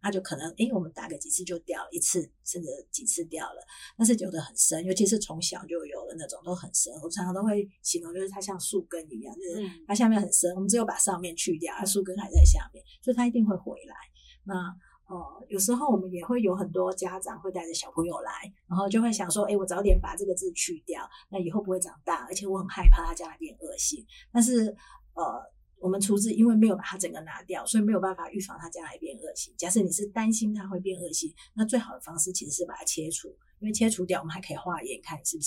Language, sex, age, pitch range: Chinese, female, 50-69, 175-215 Hz